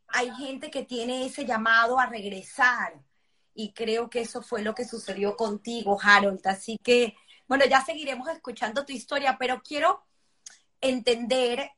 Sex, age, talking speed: female, 30-49, 150 wpm